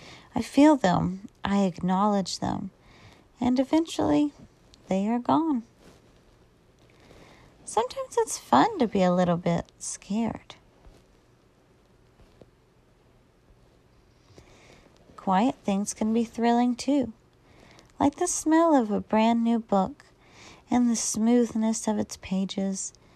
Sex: female